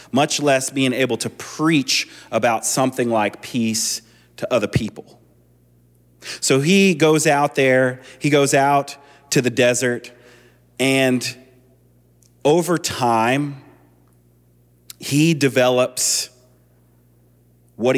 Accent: American